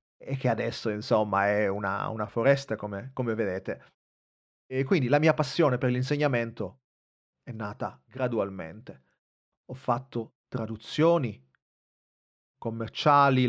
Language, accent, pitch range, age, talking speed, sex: Italian, native, 110-140 Hz, 30-49, 110 wpm, male